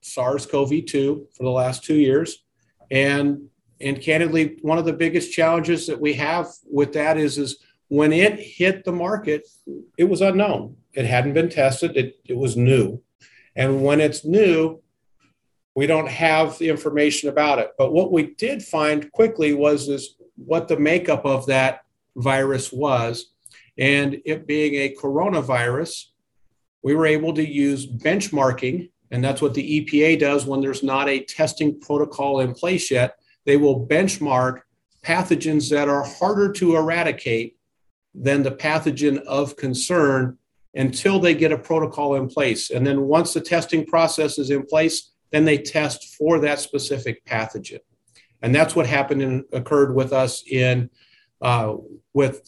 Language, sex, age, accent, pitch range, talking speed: English, male, 50-69, American, 135-160 Hz, 155 wpm